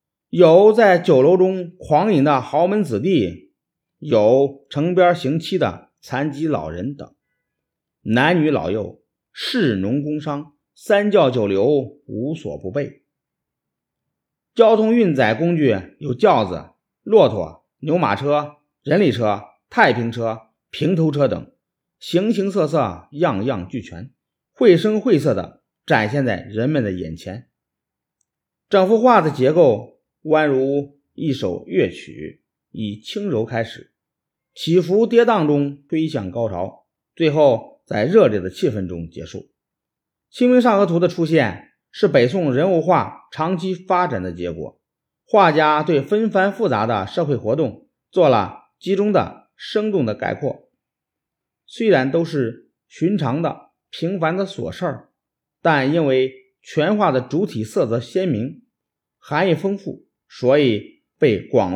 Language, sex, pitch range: Chinese, male, 125-185 Hz